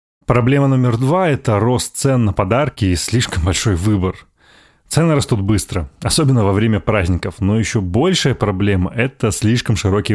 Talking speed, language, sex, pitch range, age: 155 wpm, Russian, male, 100-125 Hz, 30-49